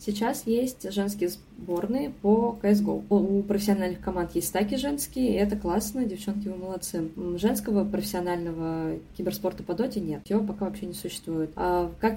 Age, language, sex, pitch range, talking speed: 20-39, Russian, female, 180-205 Hz, 155 wpm